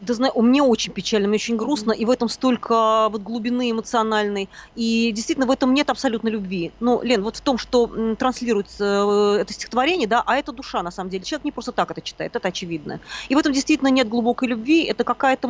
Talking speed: 210 wpm